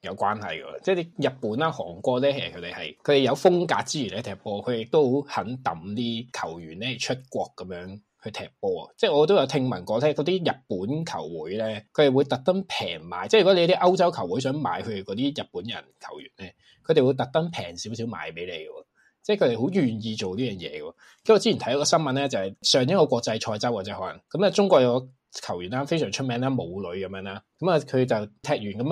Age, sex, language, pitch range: 20-39, male, Chinese, 110-165 Hz